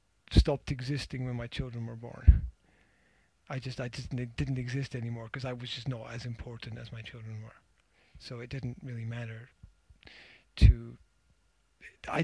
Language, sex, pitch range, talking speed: English, male, 115-160 Hz, 160 wpm